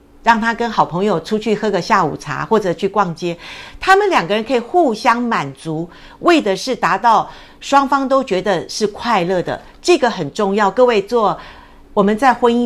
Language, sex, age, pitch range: Chinese, female, 50-69, 190-255 Hz